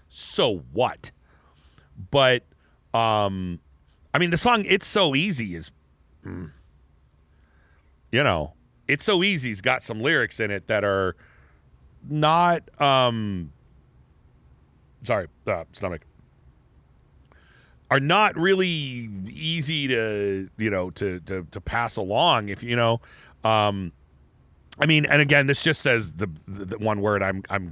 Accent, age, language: American, 40-59, English